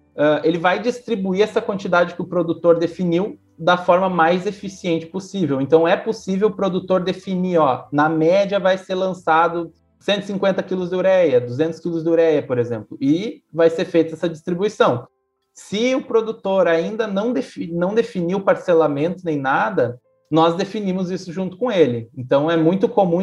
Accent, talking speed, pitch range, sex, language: Brazilian, 165 wpm, 160-195 Hz, male, Portuguese